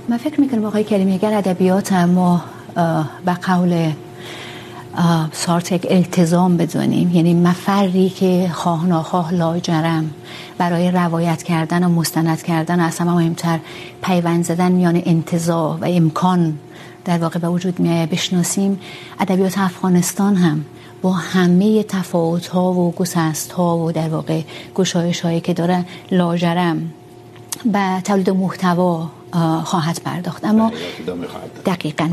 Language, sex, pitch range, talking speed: Urdu, female, 165-185 Hz, 125 wpm